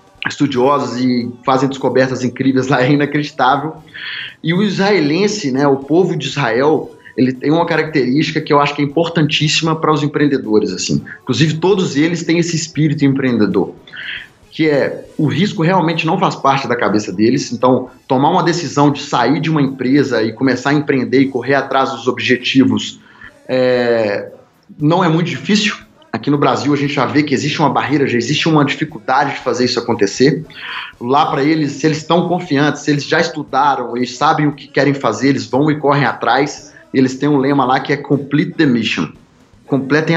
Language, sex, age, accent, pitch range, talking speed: Portuguese, male, 20-39, Brazilian, 130-155 Hz, 180 wpm